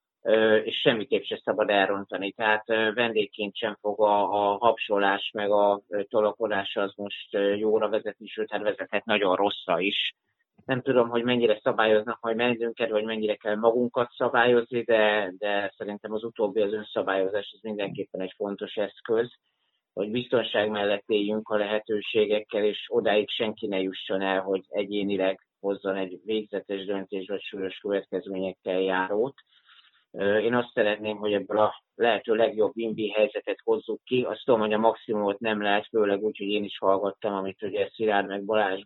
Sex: male